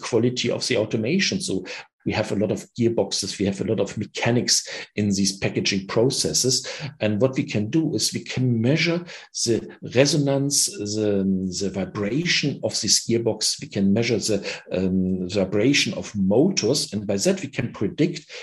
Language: English